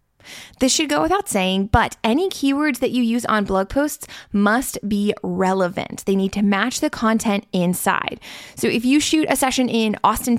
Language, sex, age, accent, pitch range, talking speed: English, female, 20-39, American, 195-255 Hz, 185 wpm